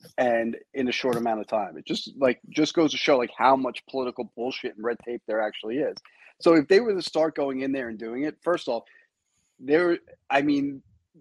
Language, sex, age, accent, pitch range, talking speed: English, male, 30-49, American, 110-140 Hz, 225 wpm